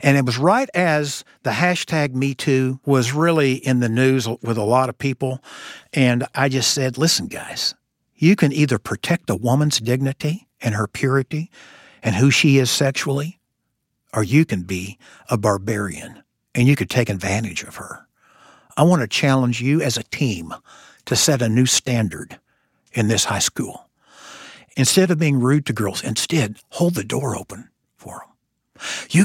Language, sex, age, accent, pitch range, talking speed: English, male, 60-79, American, 120-150 Hz, 170 wpm